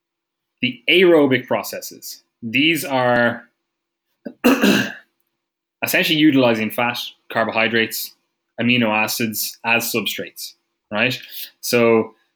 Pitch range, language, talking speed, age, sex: 115-140 Hz, English, 75 wpm, 20-39, male